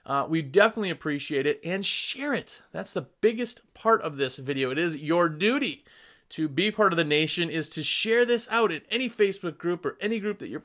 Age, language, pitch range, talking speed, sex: 30-49, English, 160-230 Hz, 220 wpm, male